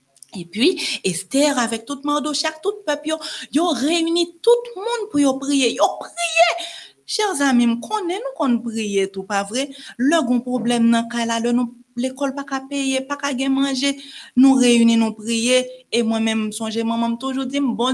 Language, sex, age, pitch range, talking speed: French, female, 40-59, 195-285 Hz, 190 wpm